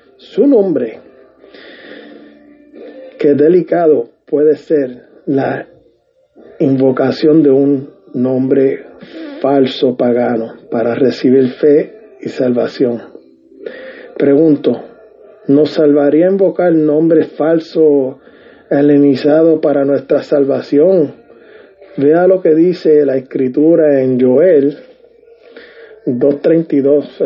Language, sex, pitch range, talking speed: English, male, 130-215 Hz, 80 wpm